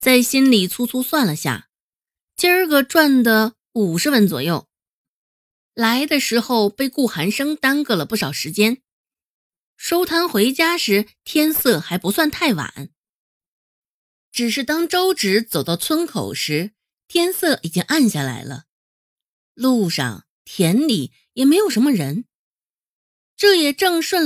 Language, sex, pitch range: Chinese, female, 195-295 Hz